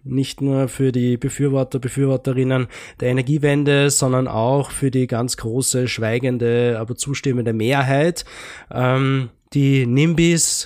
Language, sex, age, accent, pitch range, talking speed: German, male, 20-39, German, 120-140 Hz, 120 wpm